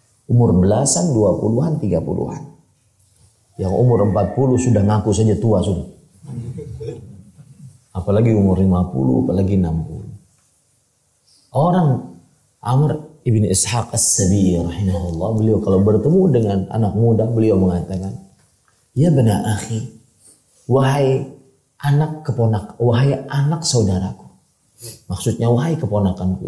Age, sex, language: 40-59, male, English